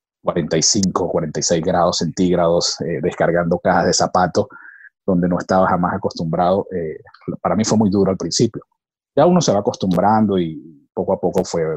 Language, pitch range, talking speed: Spanish, 85-105 Hz, 165 wpm